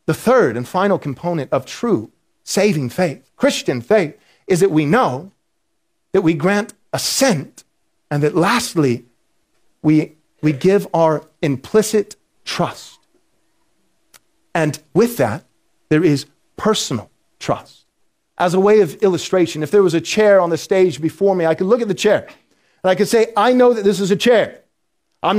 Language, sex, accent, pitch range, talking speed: English, male, American, 185-255 Hz, 160 wpm